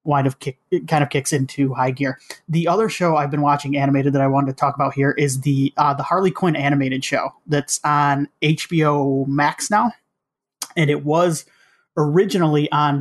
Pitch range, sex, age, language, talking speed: 140-165 Hz, male, 30-49, English, 195 wpm